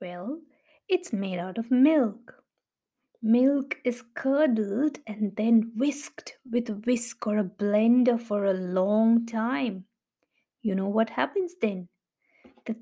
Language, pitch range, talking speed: English, 220-270 Hz, 130 wpm